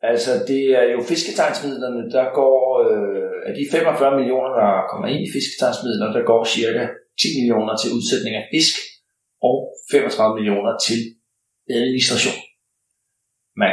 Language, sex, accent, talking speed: Danish, male, native, 140 wpm